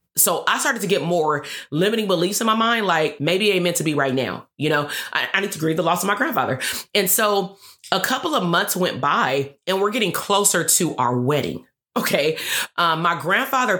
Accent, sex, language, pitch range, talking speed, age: American, female, English, 155-195 Hz, 220 wpm, 30-49